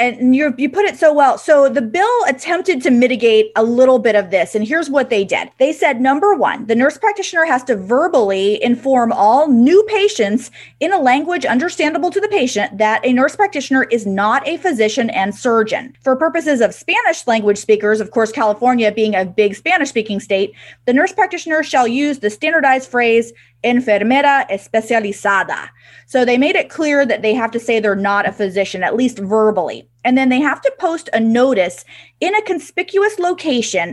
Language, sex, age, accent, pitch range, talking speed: English, female, 30-49, American, 210-275 Hz, 190 wpm